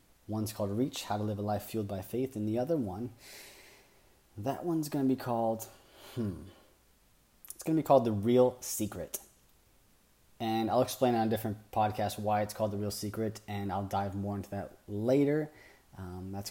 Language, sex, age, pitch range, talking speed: English, male, 30-49, 95-115 Hz, 190 wpm